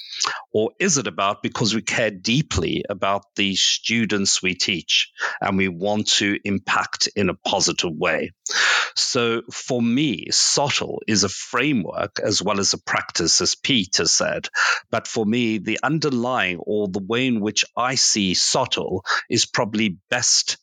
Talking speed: 155 wpm